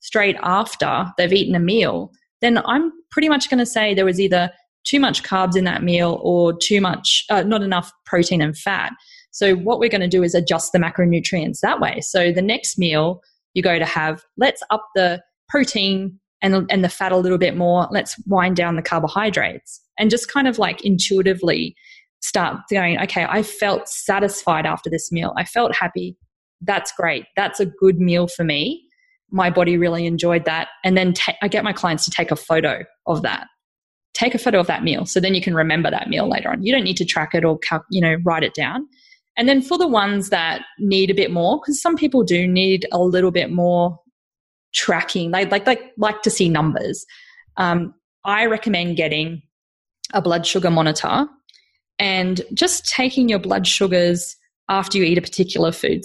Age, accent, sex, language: 20-39, Australian, female, English